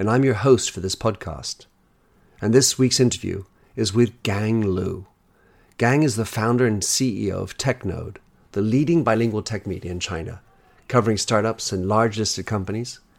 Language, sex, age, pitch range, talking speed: English, male, 50-69, 100-125 Hz, 160 wpm